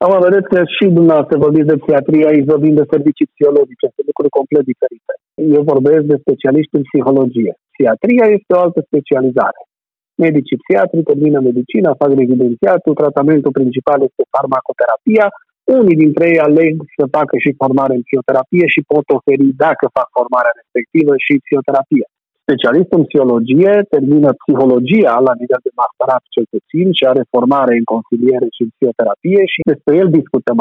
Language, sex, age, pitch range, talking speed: Romanian, male, 40-59, 135-185 Hz, 155 wpm